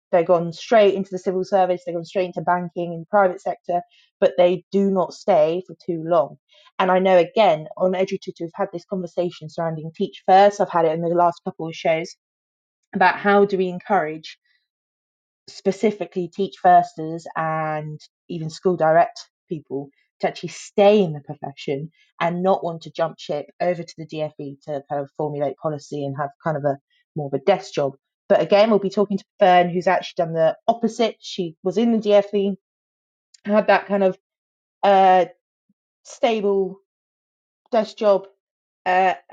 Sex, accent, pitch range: female, British, 160-195 Hz